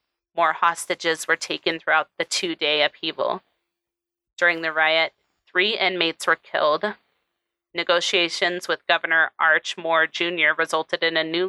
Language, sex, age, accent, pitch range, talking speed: English, female, 30-49, American, 155-185 Hz, 130 wpm